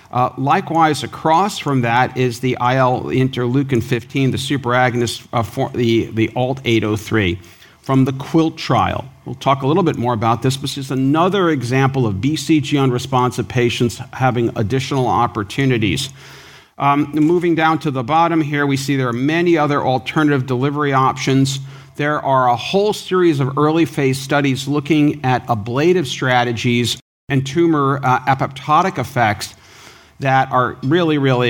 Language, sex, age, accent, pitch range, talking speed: English, male, 50-69, American, 125-145 Hz, 145 wpm